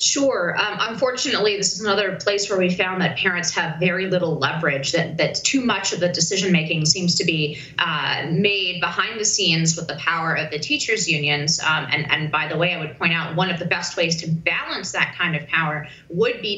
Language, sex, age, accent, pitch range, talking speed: English, female, 20-39, American, 170-210 Hz, 225 wpm